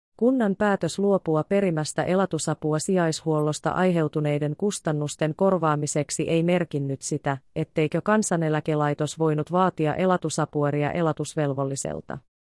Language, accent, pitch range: Finnish, native, 145-185 Hz